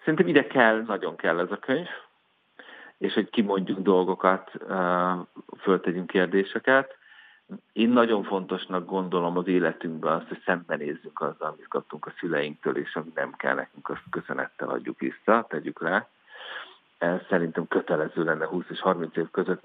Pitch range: 90-105 Hz